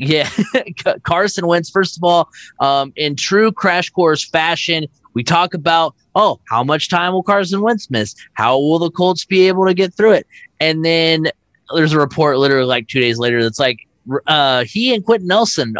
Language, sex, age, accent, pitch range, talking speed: English, male, 20-39, American, 125-165 Hz, 190 wpm